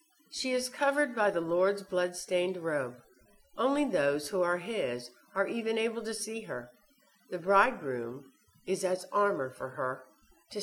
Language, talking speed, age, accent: English, 150 wpm, 60-79, American